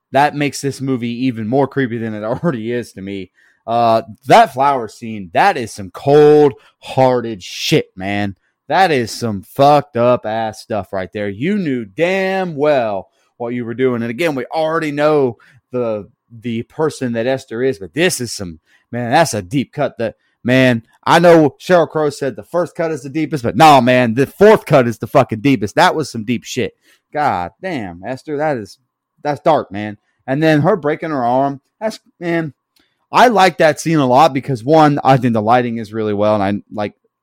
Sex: male